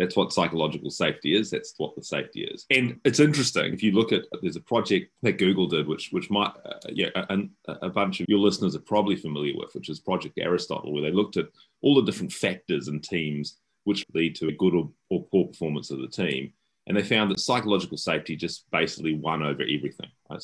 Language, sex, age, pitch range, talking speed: English, male, 30-49, 80-105 Hz, 225 wpm